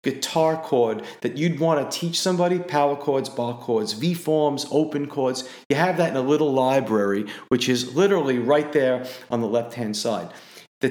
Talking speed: 185 wpm